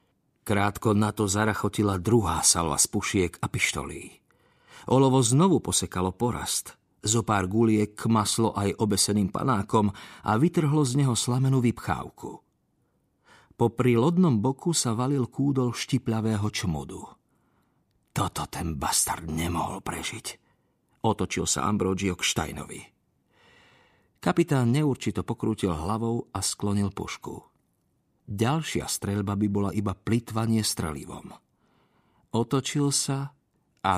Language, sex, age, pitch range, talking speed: Slovak, male, 50-69, 95-115 Hz, 110 wpm